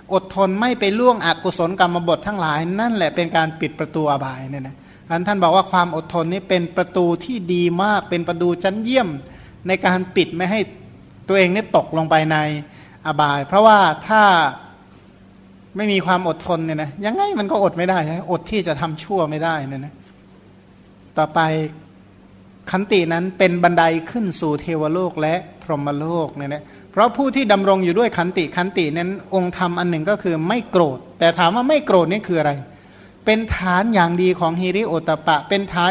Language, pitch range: Thai, 155-195 Hz